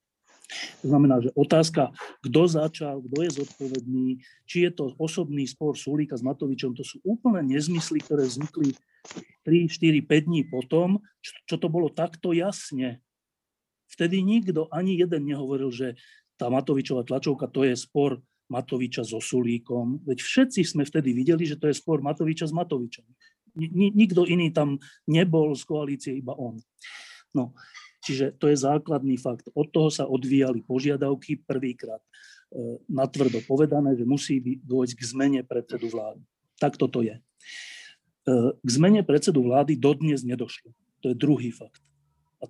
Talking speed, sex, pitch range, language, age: 145 wpm, male, 130-160 Hz, Slovak, 30-49